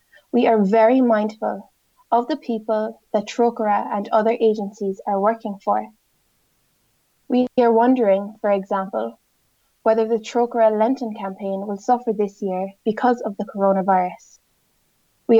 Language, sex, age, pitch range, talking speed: English, female, 20-39, 205-235 Hz, 130 wpm